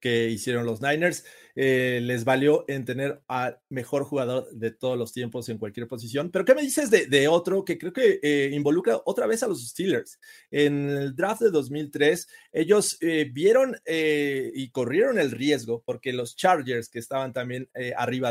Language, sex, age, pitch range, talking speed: Spanish, male, 30-49, 125-155 Hz, 185 wpm